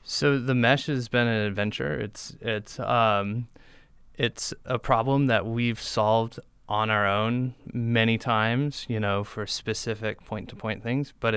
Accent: American